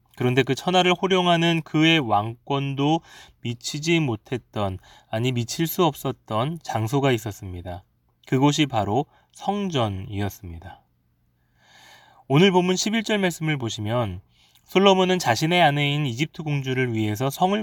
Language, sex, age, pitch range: Korean, male, 20-39, 110-160 Hz